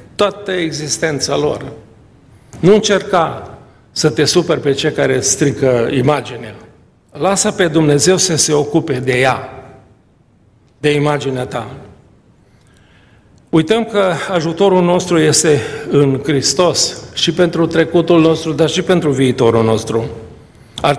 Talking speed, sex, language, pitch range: 115 wpm, male, Romanian, 125-160 Hz